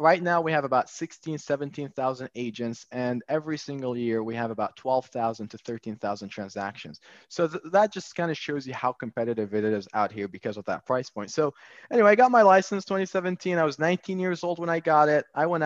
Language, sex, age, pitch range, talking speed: English, male, 20-39, 120-170 Hz, 215 wpm